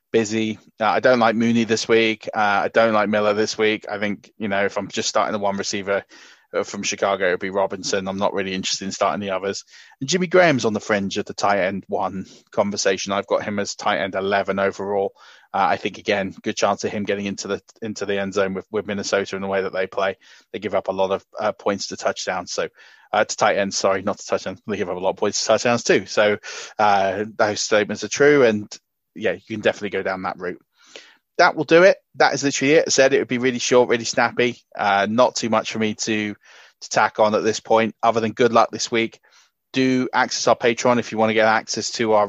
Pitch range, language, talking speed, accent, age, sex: 100-115 Hz, English, 250 wpm, British, 20-39, male